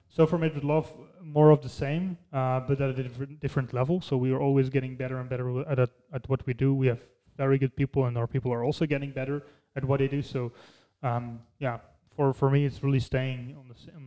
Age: 20-39